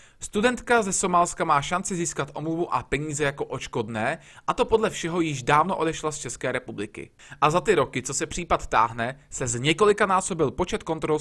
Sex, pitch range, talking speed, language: male, 135-195 Hz, 185 wpm, Czech